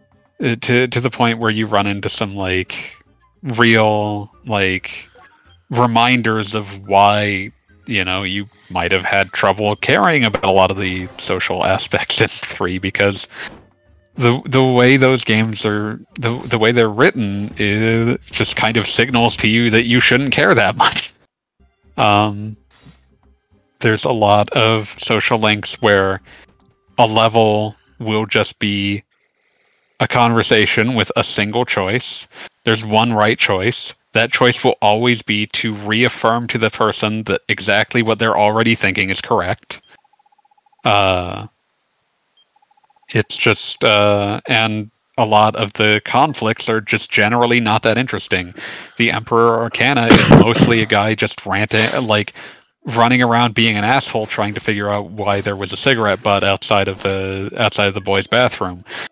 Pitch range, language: 100-115 Hz, English